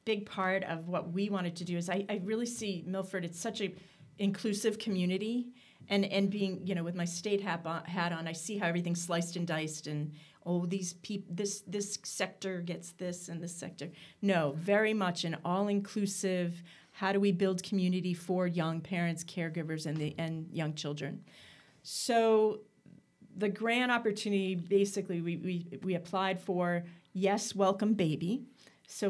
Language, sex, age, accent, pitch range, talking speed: English, female, 40-59, American, 170-200 Hz, 170 wpm